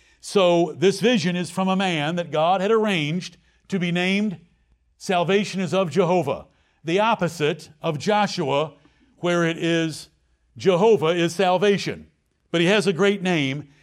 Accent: American